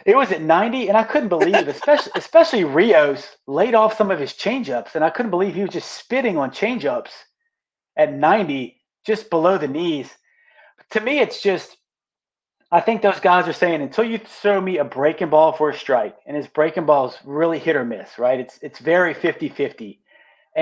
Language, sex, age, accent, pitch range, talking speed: English, male, 30-49, American, 150-205 Hz, 195 wpm